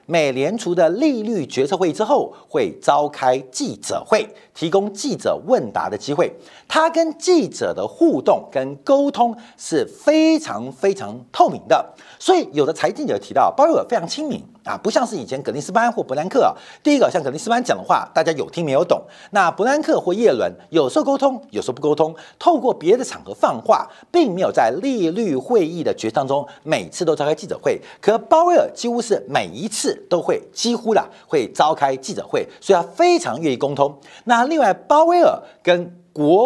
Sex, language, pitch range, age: male, Chinese, 200-335 Hz, 50-69